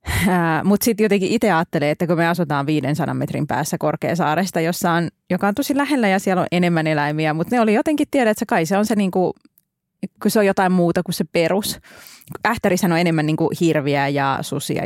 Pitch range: 160-195 Hz